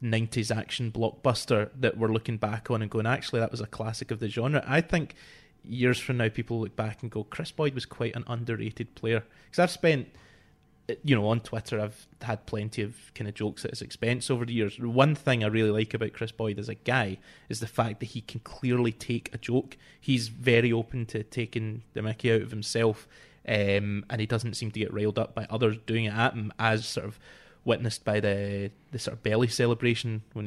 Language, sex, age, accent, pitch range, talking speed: English, male, 20-39, British, 110-130 Hz, 225 wpm